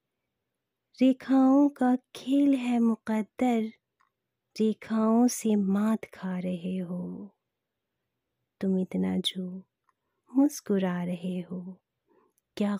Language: Hindi